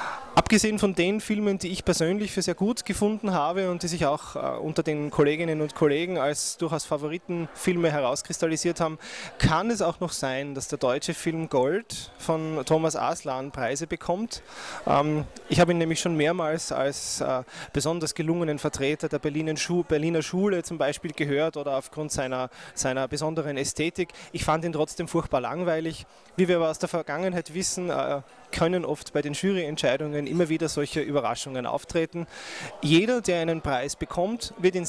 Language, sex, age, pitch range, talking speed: German, male, 20-39, 140-175 Hz, 160 wpm